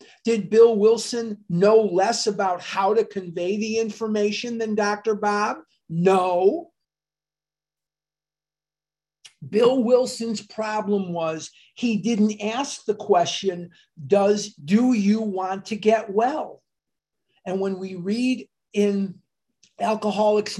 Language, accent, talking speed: English, American, 110 wpm